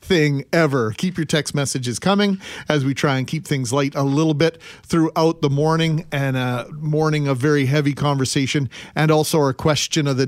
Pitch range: 125-155 Hz